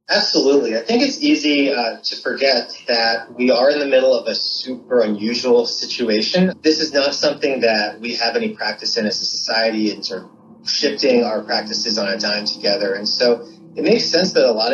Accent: American